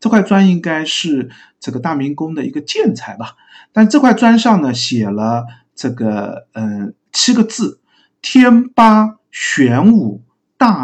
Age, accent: 50-69, native